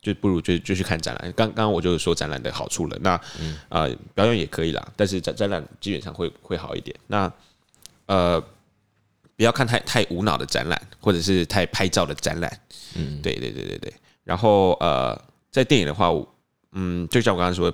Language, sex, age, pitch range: Chinese, male, 20-39, 85-105 Hz